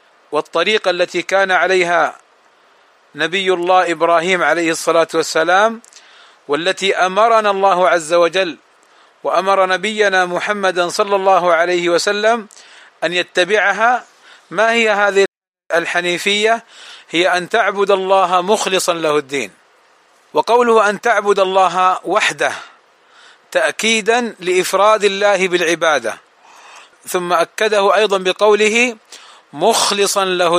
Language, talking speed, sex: Arabic, 100 wpm, male